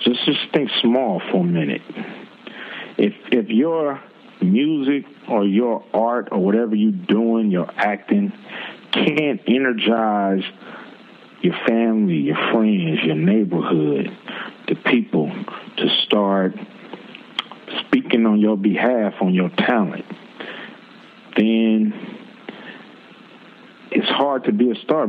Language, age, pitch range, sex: English, 50-69, 100-130 Hz, male